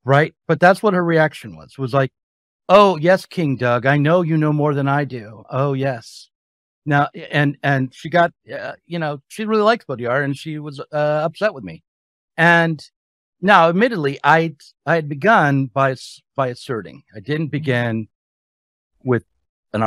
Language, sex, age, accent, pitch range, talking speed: English, male, 50-69, American, 105-155 Hz, 170 wpm